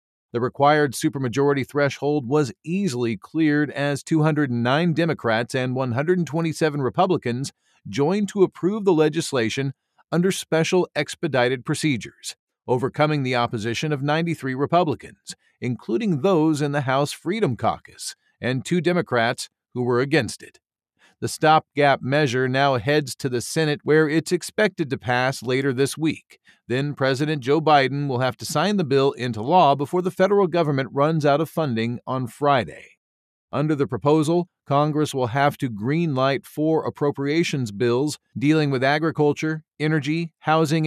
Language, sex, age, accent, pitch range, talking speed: English, male, 40-59, American, 130-155 Hz, 140 wpm